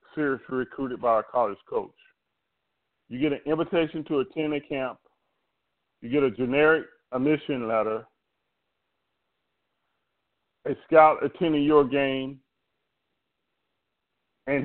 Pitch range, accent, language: 130-150 Hz, American, English